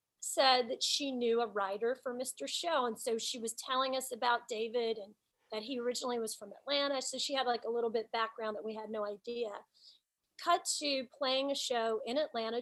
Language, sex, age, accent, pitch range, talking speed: English, female, 30-49, American, 225-285 Hz, 210 wpm